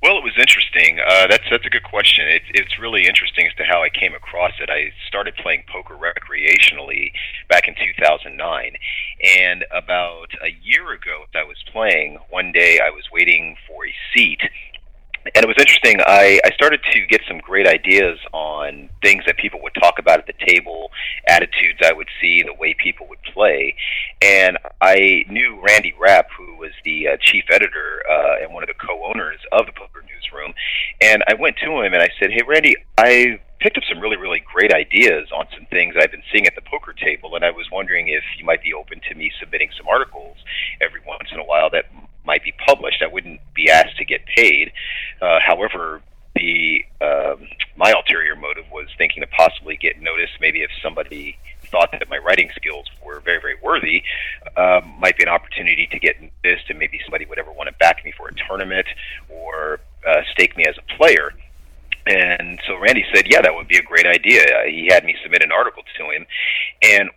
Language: English